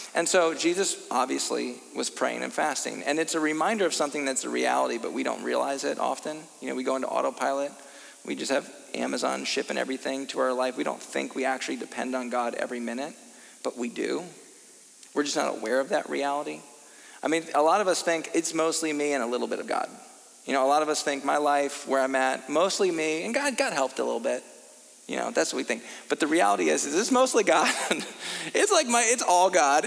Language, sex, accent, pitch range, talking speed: English, male, American, 135-190 Hz, 230 wpm